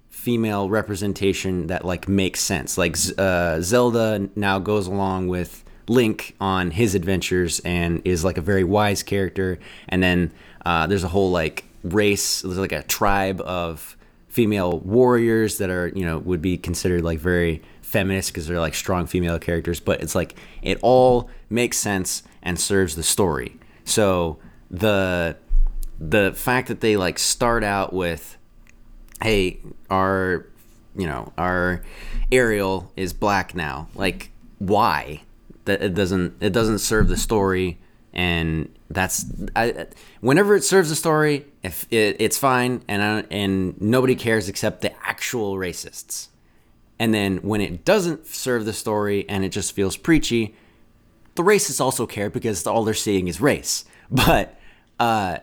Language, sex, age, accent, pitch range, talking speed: English, male, 20-39, American, 90-115 Hz, 155 wpm